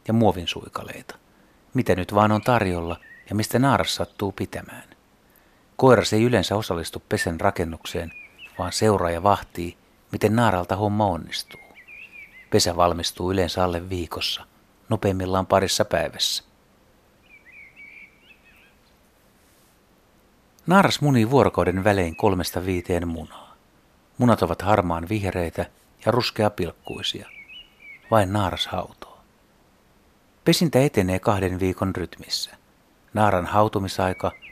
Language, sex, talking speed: Finnish, male, 105 wpm